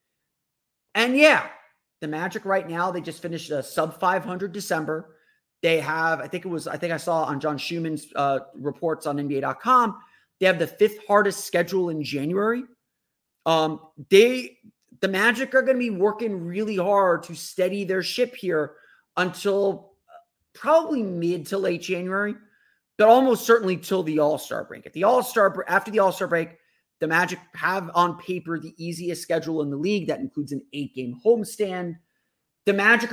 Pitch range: 150-200 Hz